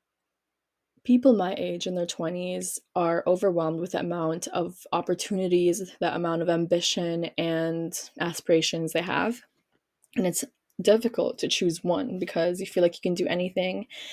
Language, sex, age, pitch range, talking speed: English, female, 20-39, 170-195 Hz, 150 wpm